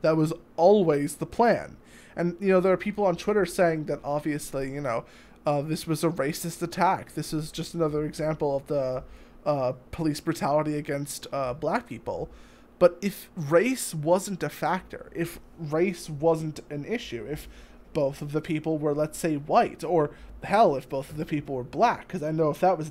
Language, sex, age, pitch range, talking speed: English, male, 20-39, 145-175 Hz, 190 wpm